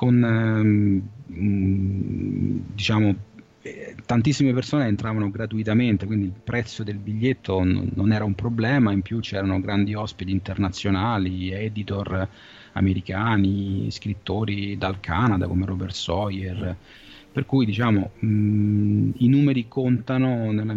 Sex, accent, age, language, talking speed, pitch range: male, native, 30-49, Italian, 110 wpm, 100-115 Hz